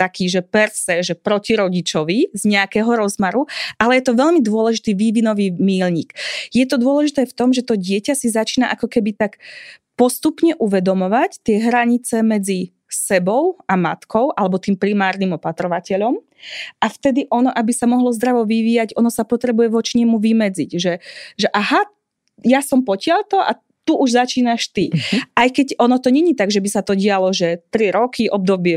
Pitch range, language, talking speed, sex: 200-250 Hz, Slovak, 170 wpm, female